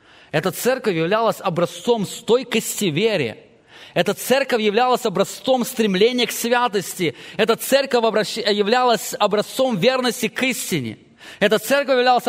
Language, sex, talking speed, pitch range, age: English, male, 110 wpm, 170-255 Hz, 20-39